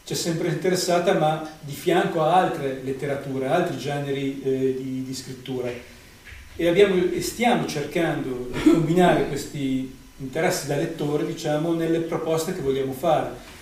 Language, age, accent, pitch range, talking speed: Italian, 40-59, native, 140-165 Hz, 140 wpm